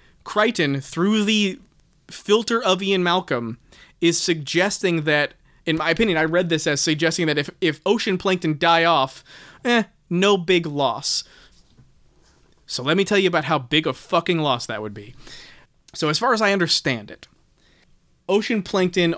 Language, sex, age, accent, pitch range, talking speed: English, male, 20-39, American, 145-180 Hz, 165 wpm